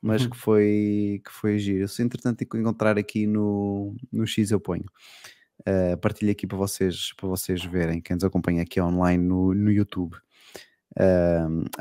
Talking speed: 175 wpm